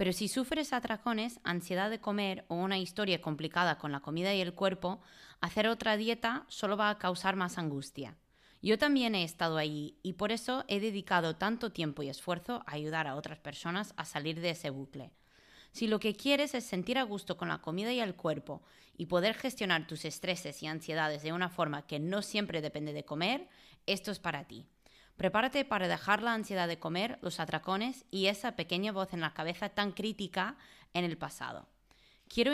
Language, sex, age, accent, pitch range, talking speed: English, female, 20-39, Spanish, 160-220 Hz, 195 wpm